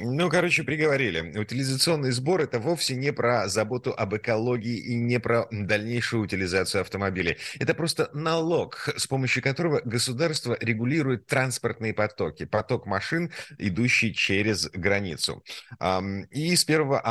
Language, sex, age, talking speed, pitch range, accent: Russian, male, 30-49, 125 wpm, 95-130 Hz, native